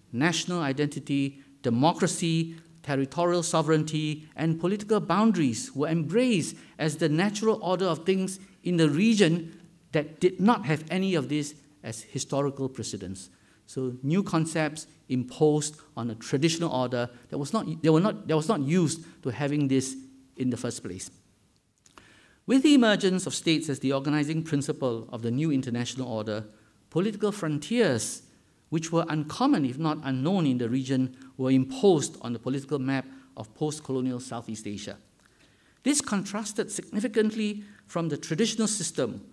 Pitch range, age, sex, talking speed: 130-175 Hz, 50-69, male, 145 wpm